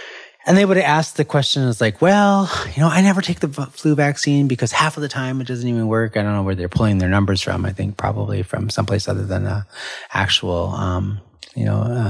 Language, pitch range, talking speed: English, 95-125 Hz, 235 wpm